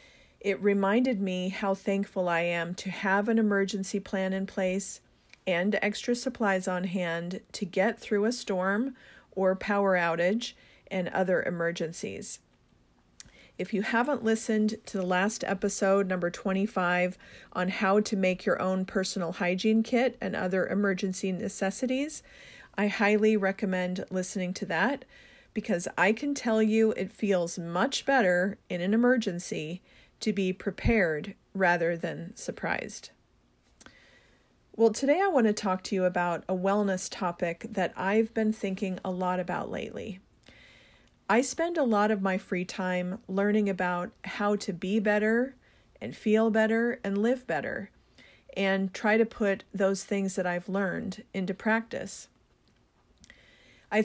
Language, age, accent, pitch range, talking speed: English, 40-59, American, 185-220 Hz, 140 wpm